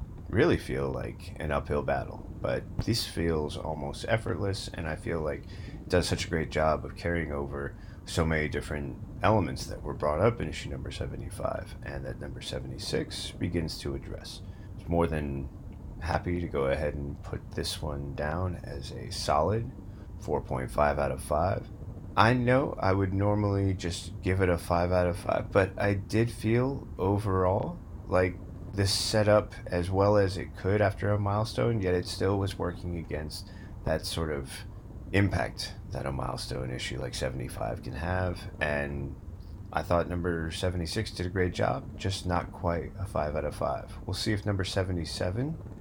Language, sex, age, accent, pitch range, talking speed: English, male, 30-49, American, 80-105 Hz, 175 wpm